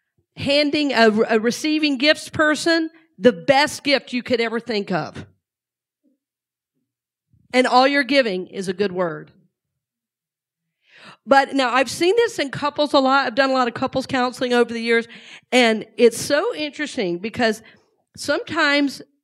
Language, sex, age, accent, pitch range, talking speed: English, female, 40-59, American, 230-290 Hz, 145 wpm